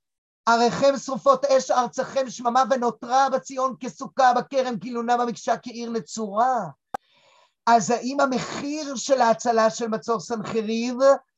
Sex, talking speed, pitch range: male, 110 wpm, 225-265 Hz